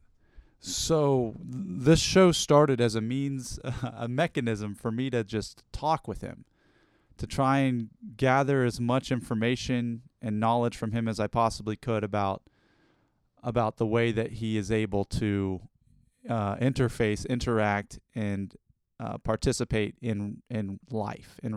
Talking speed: 145 wpm